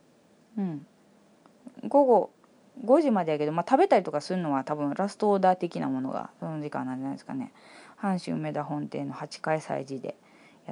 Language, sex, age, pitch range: Japanese, female, 20-39, 145-210 Hz